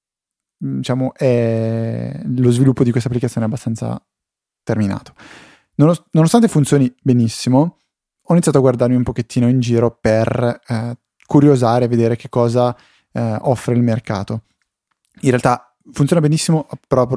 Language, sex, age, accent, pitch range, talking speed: Italian, male, 20-39, native, 115-140 Hz, 135 wpm